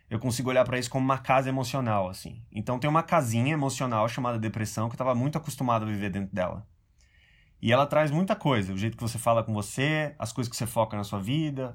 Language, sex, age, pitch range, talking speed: Portuguese, male, 20-39, 105-145 Hz, 235 wpm